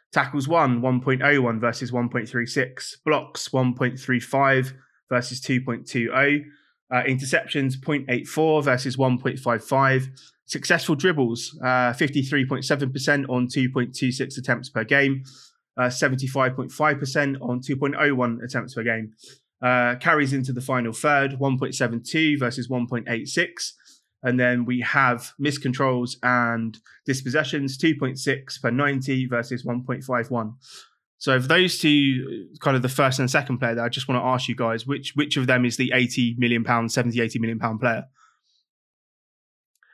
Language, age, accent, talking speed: English, 20-39, British, 125 wpm